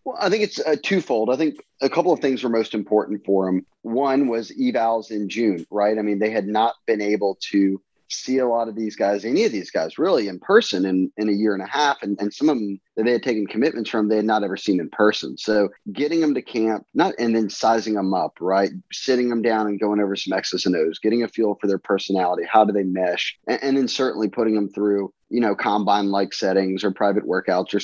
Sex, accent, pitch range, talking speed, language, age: male, American, 100-115 Hz, 250 wpm, English, 30-49